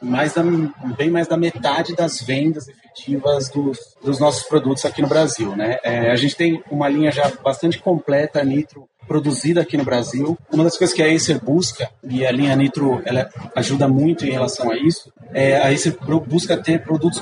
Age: 30-49